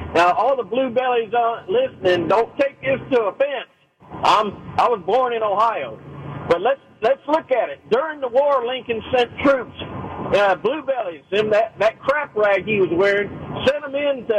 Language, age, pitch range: English, 50-69, 185-275 Hz